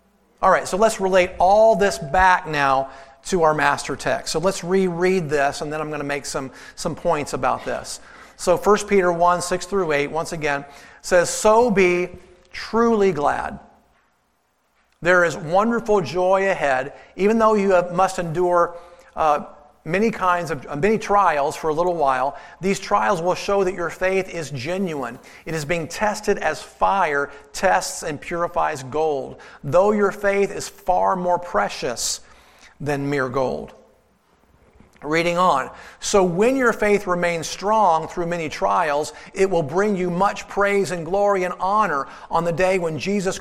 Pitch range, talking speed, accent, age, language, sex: 160-195 Hz, 165 wpm, American, 40-59, English, male